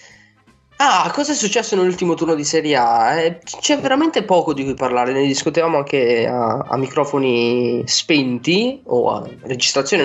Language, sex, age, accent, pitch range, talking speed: Italian, male, 10-29, native, 120-165 Hz, 155 wpm